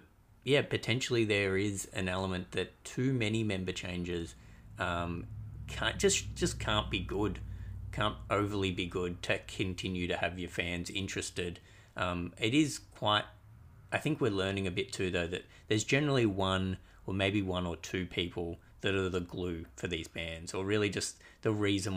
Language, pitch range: English, 90-105 Hz